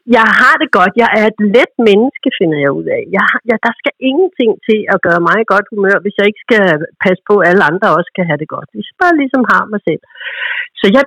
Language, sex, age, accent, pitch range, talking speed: Danish, female, 60-79, native, 185-245 Hz, 260 wpm